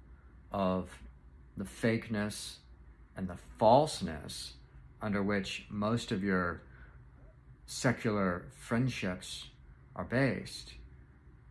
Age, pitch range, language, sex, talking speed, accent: 50-69, 85-105 Hz, English, male, 80 wpm, American